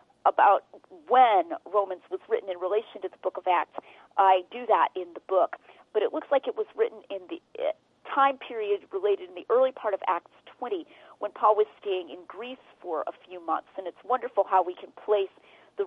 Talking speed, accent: 210 wpm, American